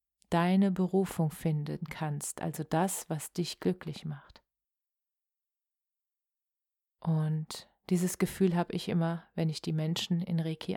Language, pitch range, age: German, 165-180 Hz, 30-49